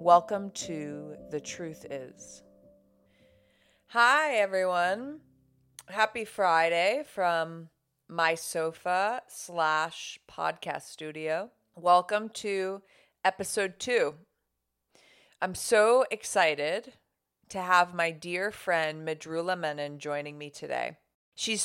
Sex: female